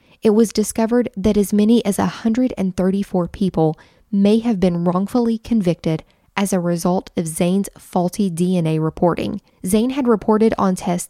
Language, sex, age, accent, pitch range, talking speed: English, female, 10-29, American, 175-210 Hz, 145 wpm